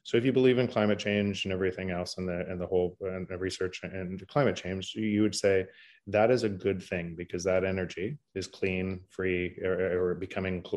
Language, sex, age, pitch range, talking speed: English, male, 20-39, 90-105 Hz, 205 wpm